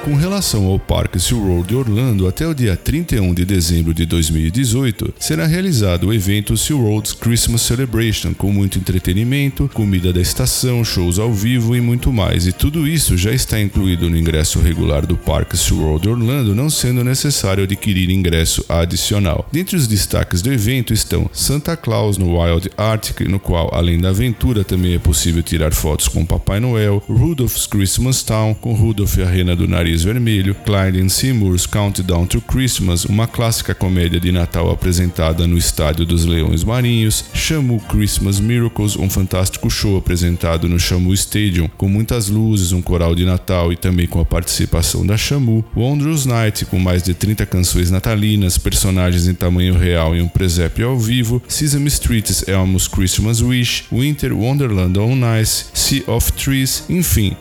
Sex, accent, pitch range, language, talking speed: male, Brazilian, 90-115 Hz, Portuguese, 170 wpm